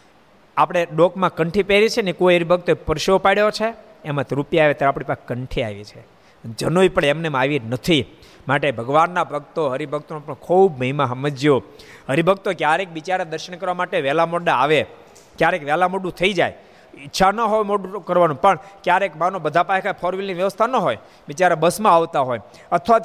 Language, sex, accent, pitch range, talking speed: Gujarati, male, native, 140-195 Hz, 175 wpm